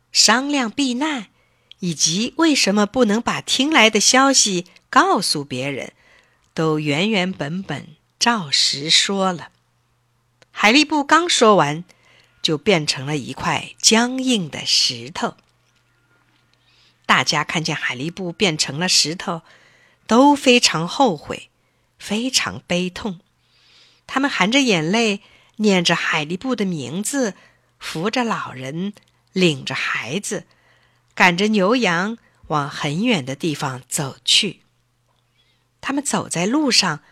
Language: Chinese